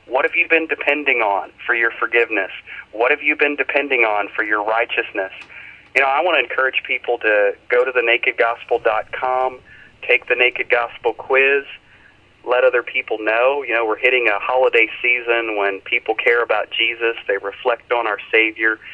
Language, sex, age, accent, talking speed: English, male, 40-59, American, 175 wpm